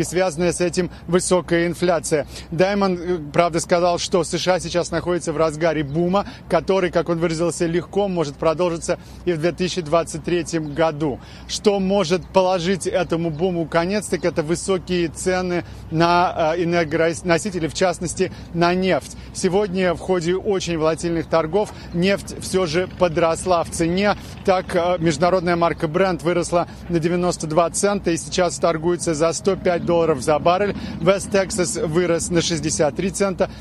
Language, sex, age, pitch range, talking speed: Russian, male, 30-49, 165-185 Hz, 135 wpm